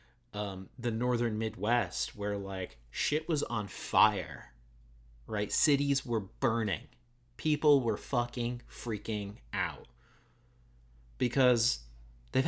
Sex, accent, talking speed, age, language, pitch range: male, American, 100 wpm, 30-49, English, 90-120 Hz